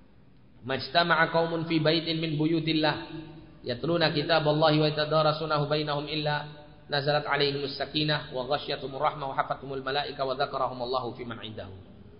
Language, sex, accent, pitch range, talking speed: Indonesian, male, native, 135-165 Hz, 80 wpm